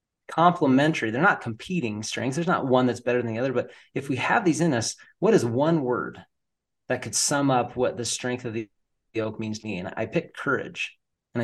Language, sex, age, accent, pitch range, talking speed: English, male, 30-49, American, 120-155 Hz, 220 wpm